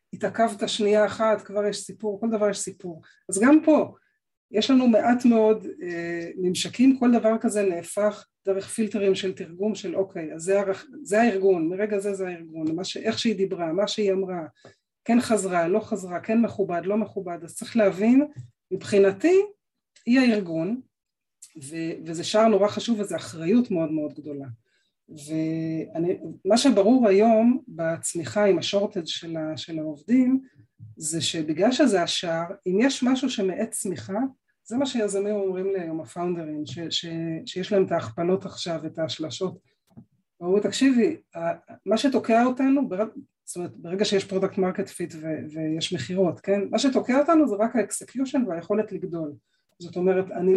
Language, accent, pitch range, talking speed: Hebrew, native, 170-220 Hz, 150 wpm